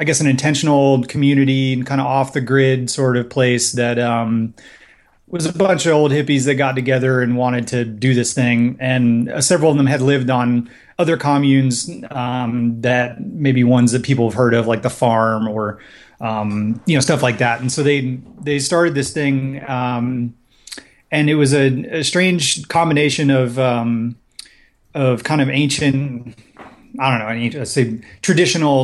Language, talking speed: English, 185 wpm